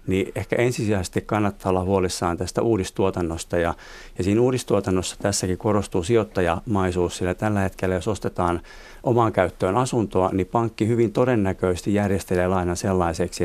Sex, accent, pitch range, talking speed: male, native, 90-110 Hz, 135 wpm